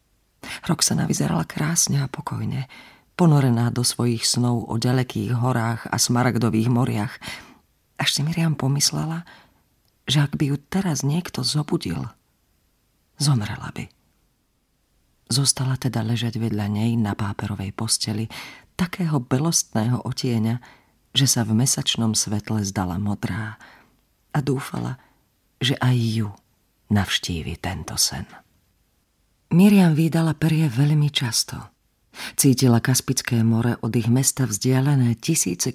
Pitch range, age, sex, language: 110-145 Hz, 40-59, female, Slovak